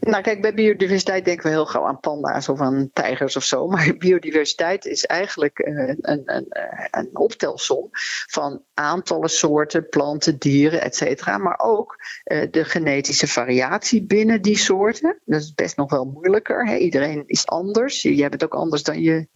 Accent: Dutch